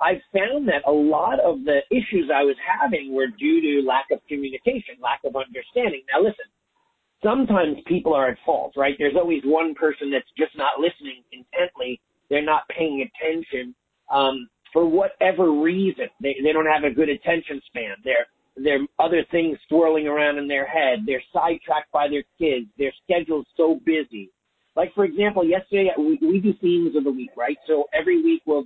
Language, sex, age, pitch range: English, male, 40-59, 140-185 Hz